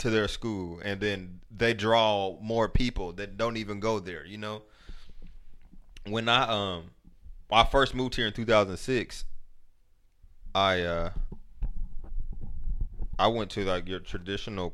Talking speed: 140 wpm